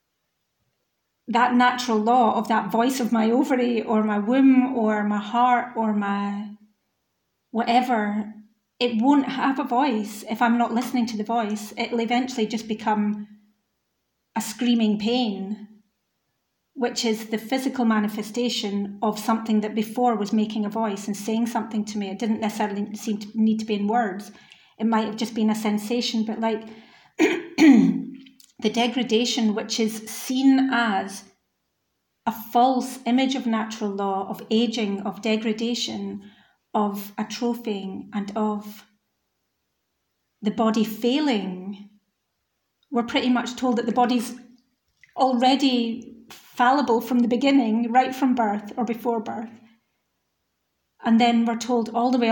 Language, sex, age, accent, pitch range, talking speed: English, female, 30-49, British, 215-245 Hz, 140 wpm